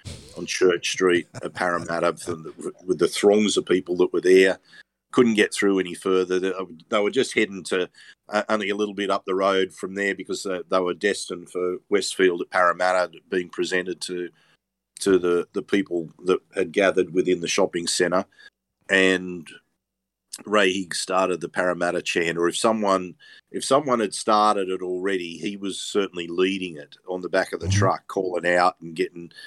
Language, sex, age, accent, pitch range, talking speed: English, male, 50-69, Australian, 85-95 Hz, 175 wpm